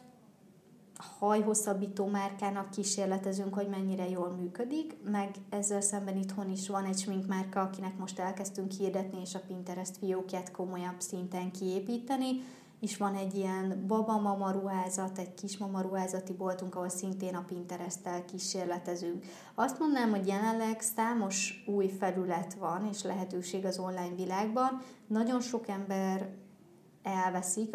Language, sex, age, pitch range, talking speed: Hungarian, female, 20-39, 185-215 Hz, 125 wpm